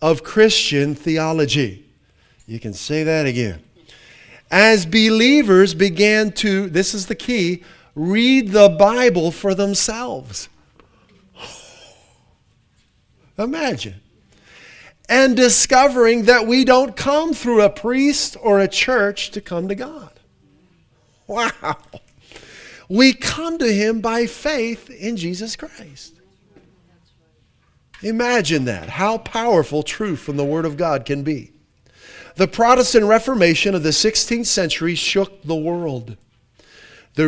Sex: male